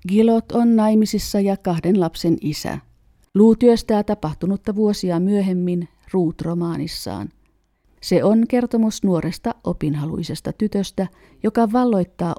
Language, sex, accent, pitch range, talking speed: Finnish, female, native, 165-210 Hz, 100 wpm